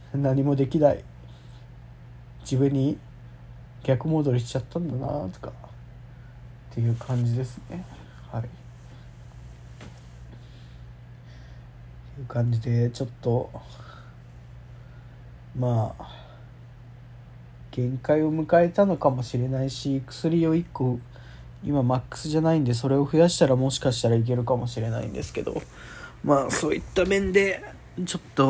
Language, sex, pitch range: Japanese, male, 115-135 Hz